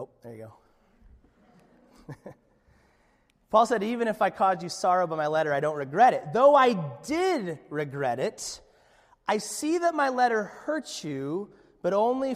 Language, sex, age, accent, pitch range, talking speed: English, male, 30-49, American, 150-250 Hz, 160 wpm